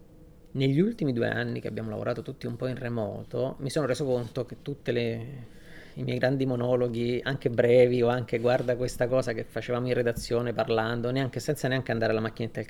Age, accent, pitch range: 30-49, native, 115-135 Hz